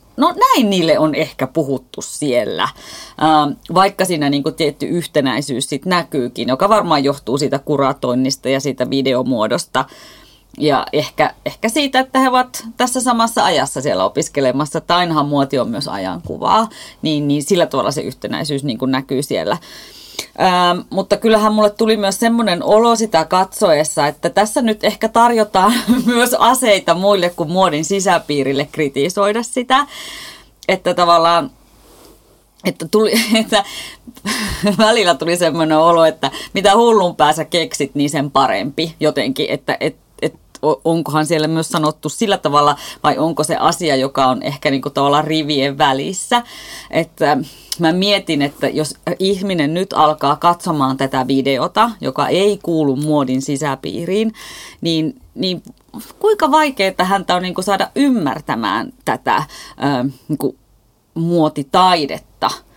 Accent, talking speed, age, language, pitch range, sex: native, 130 wpm, 30-49, Finnish, 145-205 Hz, female